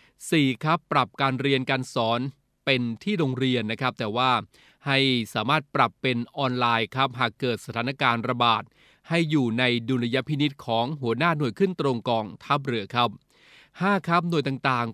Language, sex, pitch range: Thai, male, 120-145 Hz